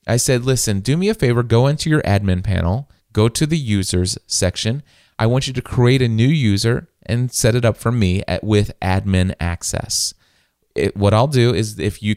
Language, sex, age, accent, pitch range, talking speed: English, male, 30-49, American, 100-130 Hz, 205 wpm